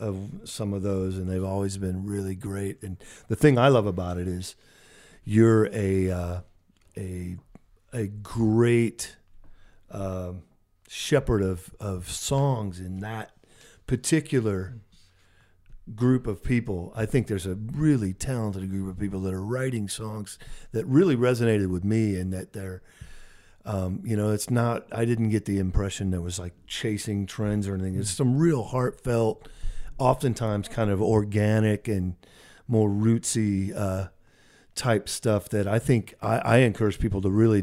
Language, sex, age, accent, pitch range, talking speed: English, male, 50-69, American, 95-115 Hz, 155 wpm